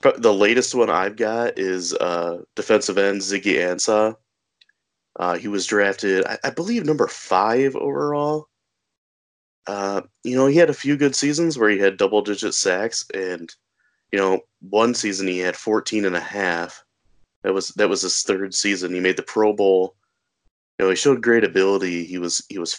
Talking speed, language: 180 wpm, English